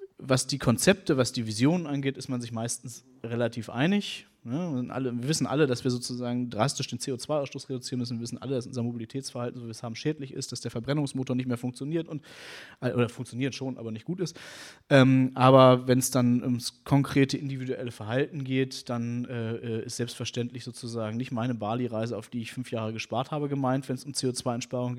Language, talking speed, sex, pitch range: German, 200 wpm, male, 125-145 Hz